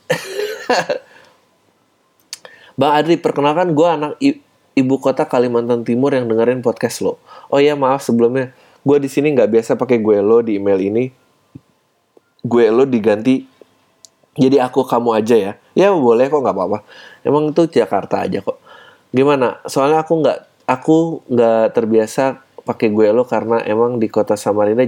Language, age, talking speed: Indonesian, 20-39, 150 wpm